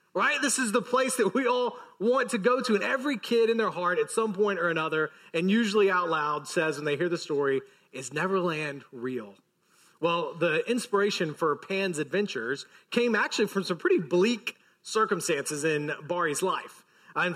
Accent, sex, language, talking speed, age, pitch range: American, male, English, 185 wpm, 30-49, 165-205 Hz